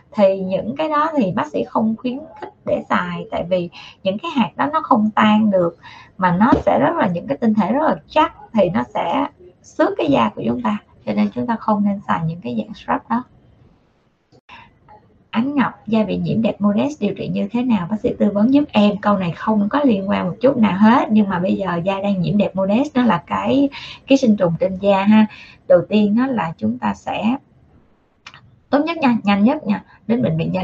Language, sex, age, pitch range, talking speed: Vietnamese, female, 20-39, 190-245 Hz, 230 wpm